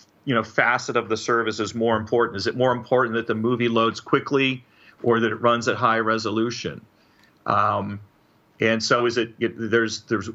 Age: 40-59